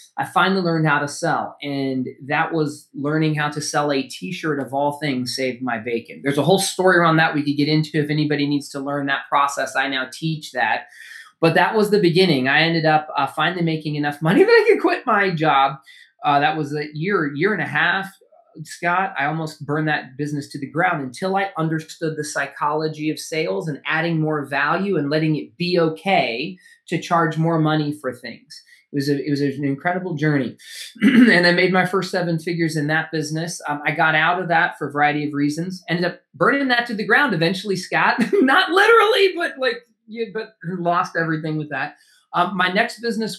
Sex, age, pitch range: male, 20-39, 145-180 Hz